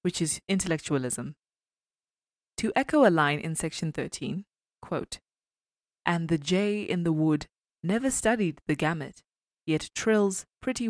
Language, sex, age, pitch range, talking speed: English, female, 20-39, 150-195 Hz, 130 wpm